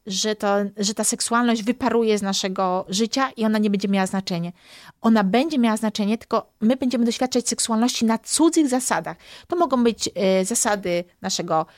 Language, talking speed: Polish, 160 wpm